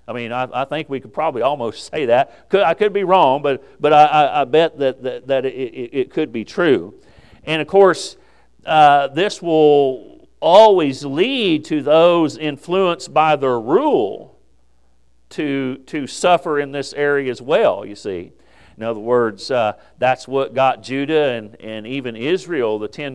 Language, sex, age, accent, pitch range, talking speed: English, male, 50-69, American, 130-175 Hz, 175 wpm